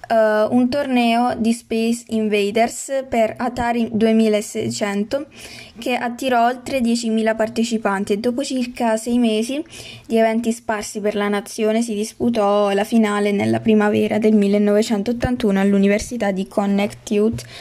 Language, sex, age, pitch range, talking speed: Italian, female, 20-39, 210-230 Hz, 125 wpm